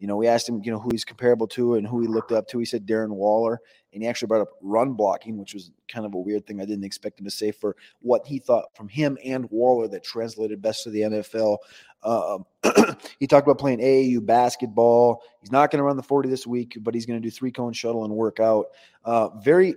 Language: English